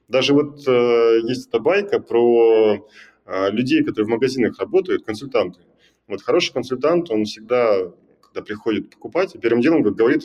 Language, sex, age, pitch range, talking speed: Russian, male, 20-39, 110-155 Hz, 145 wpm